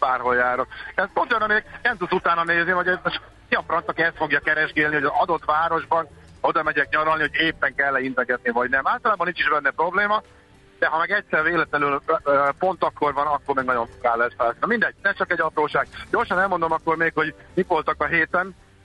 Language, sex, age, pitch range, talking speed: Hungarian, male, 50-69, 145-185 Hz, 205 wpm